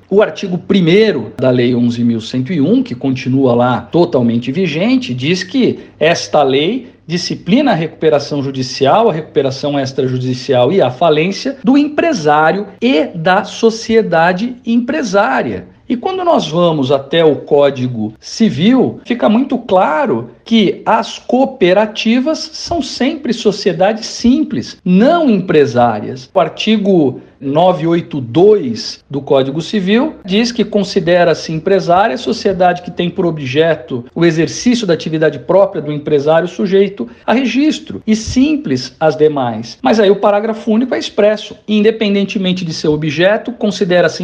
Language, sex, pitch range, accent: Portuguese, male, 155-225 Hz, Brazilian